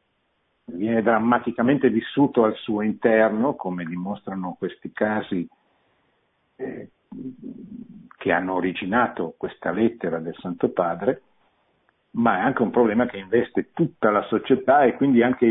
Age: 50-69